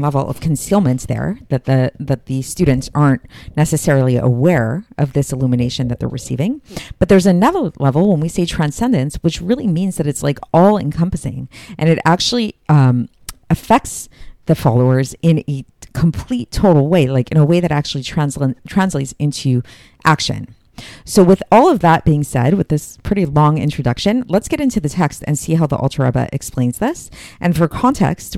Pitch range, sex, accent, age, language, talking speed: 135-170 Hz, female, American, 40-59, English, 175 wpm